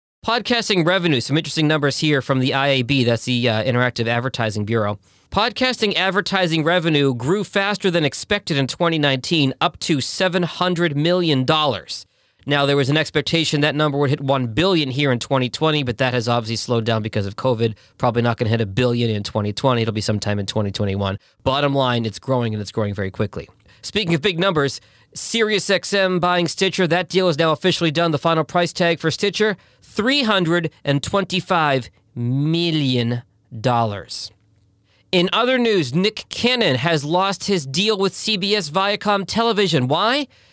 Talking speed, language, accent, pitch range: 165 wpm, English, American, 120-180 Hz